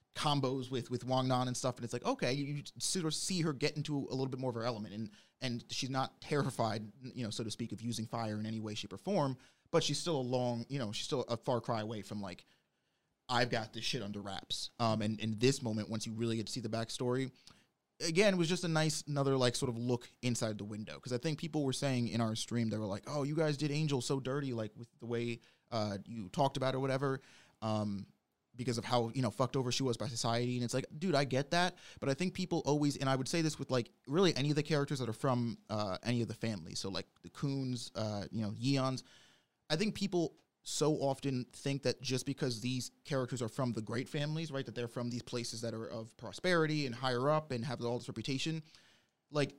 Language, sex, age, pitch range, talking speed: English, male, 30-49, 115-140 Hz, 255 wpm